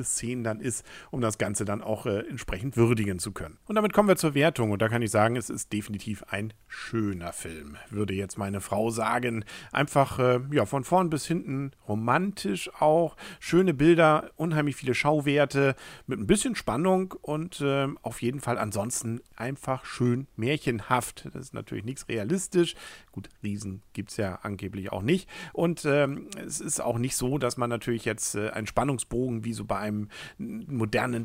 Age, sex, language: 50-69, male, German